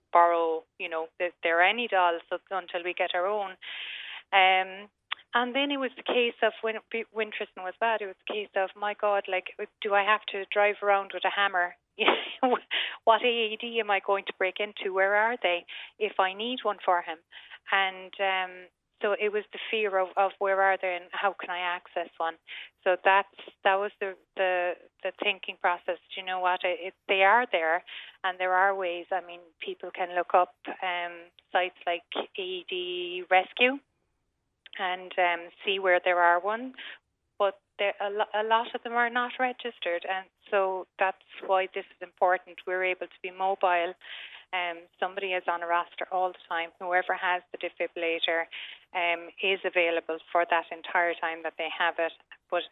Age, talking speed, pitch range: 30-49, 185 wpm, 175-205 Hz